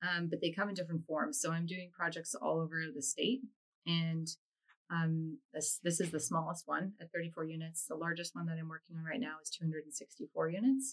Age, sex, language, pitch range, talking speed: 20-39, female, English, 160-180 Hz, 210 wpm